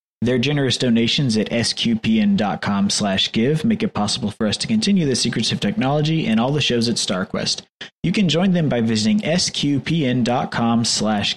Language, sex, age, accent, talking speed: English, male, 20-39, American, 170 wpm